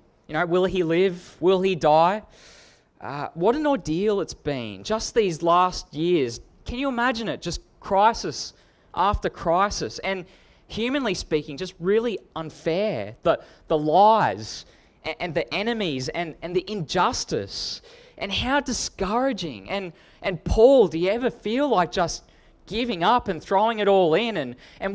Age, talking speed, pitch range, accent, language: 20-39, 155 wpm, 165-220 Hz, Australian, English